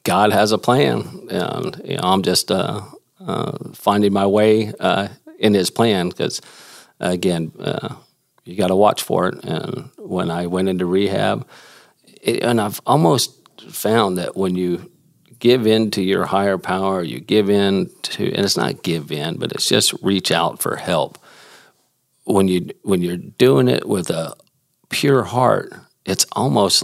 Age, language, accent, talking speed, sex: 40-59, English, American, 170 wpm, male